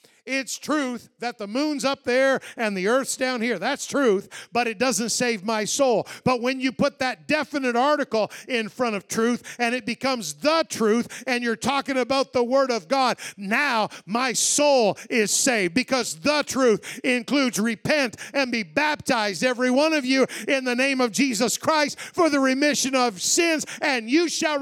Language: English